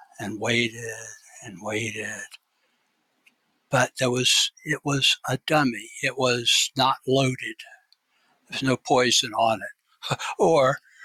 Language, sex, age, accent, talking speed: English, male, 60-79, American, 115 wpm